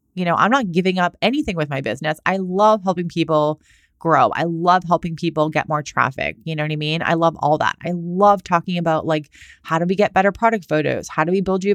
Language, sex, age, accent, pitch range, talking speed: English, female, 30-49, American, 155-195 Hz, 245 wpm